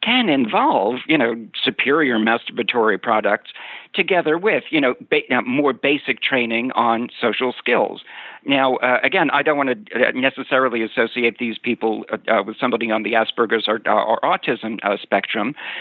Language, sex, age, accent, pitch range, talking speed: English, male, 50-69, American, 120-160 Hz, 155 wpm